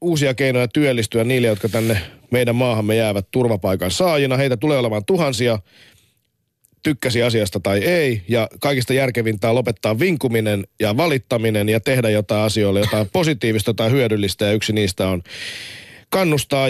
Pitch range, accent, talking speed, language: 110-140 Hz, native, 140 wpm, Finnish